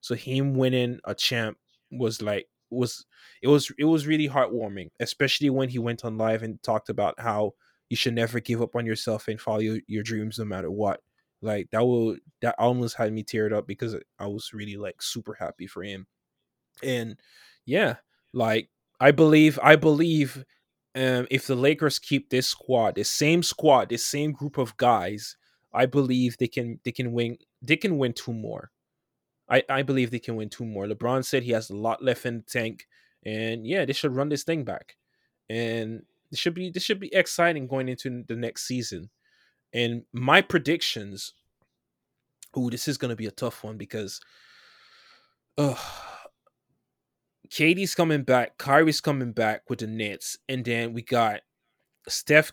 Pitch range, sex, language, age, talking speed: 115-140 Hz, male, English, 20-39, 180 wpm